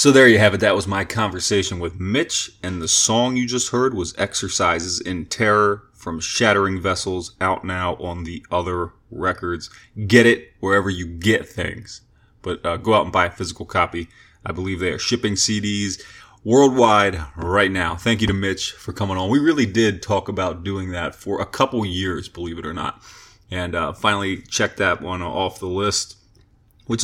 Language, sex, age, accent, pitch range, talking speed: English, male, 30-49, American, 95-110 Hz, 190 wpm